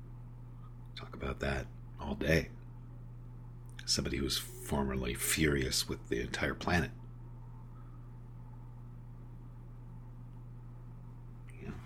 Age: 50-69